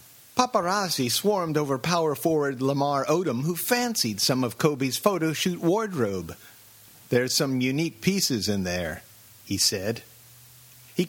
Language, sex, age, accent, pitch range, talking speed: English, male, 50-69, American, 115-180 Hz, 125 wpm